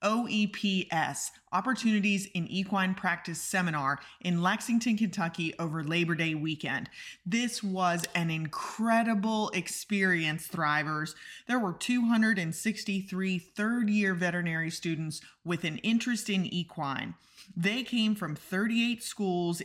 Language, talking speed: English, 105 wpm